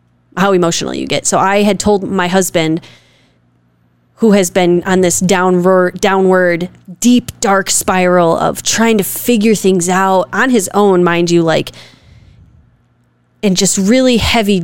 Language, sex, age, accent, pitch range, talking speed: English, female, 20-39, American, 175-195 Hz, 150 wpm